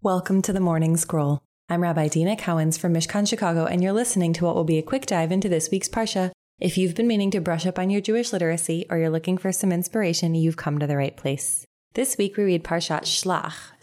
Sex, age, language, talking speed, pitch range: female, 20-39, English, 240 wpm, 160-215 Hz